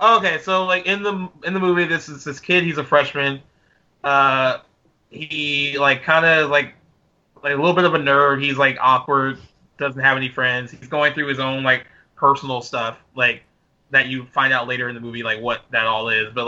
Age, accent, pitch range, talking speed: 20-39, American, 130-155 Hz, 210 wpm